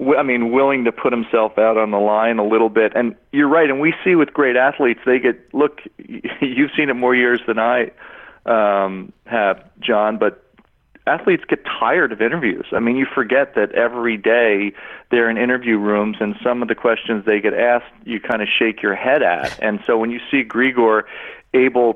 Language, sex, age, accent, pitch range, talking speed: English, male, 40-59, American, 110-130 Hz, 200 wpm